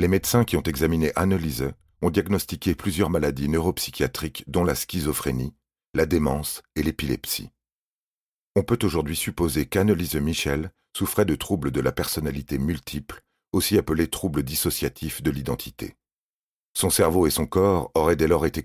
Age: 40-59